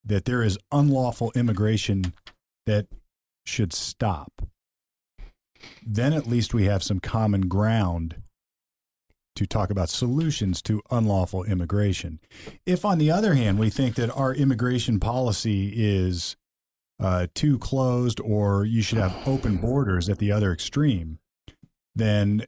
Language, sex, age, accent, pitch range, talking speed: English, male, 40-59, American, 95-115 Hz, 130 wpm